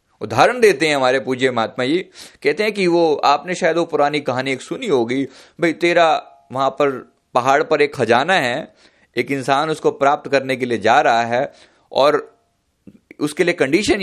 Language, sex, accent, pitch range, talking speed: Hindi, male, native, 130-210 Hz, 180 wpm